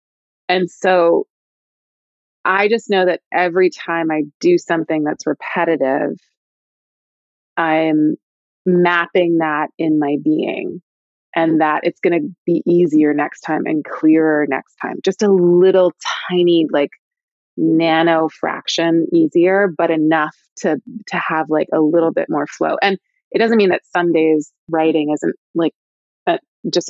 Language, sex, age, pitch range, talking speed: English, female, 20-39, 155-195 Hz, 135 wpm